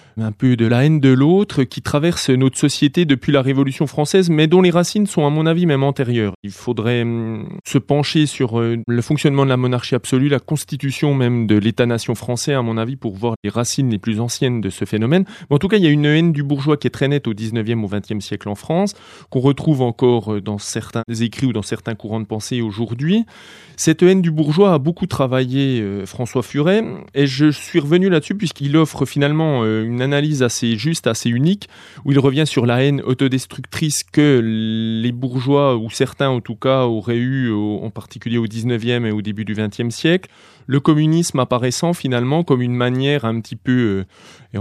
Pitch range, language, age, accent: 115-145 Hz, French, 30-49, French